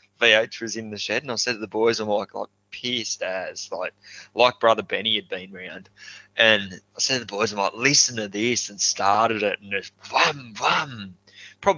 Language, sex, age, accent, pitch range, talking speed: English, male, 20-39, Australian, 100-110 Hz, 215 wpm